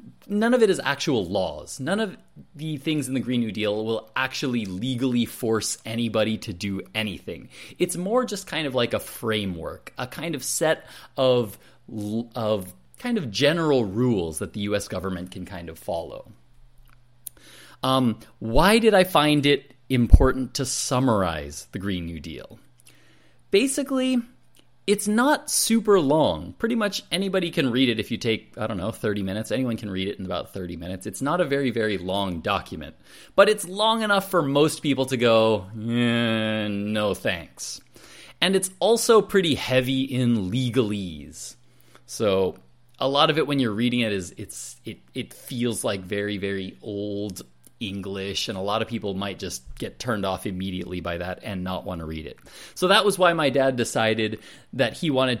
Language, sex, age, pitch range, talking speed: English, male, 30-49, 100-145 Hz, 175 wpm